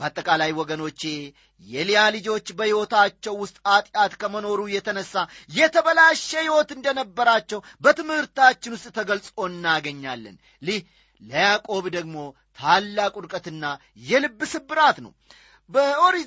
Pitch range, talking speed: 180-260 Hz, 85 wpm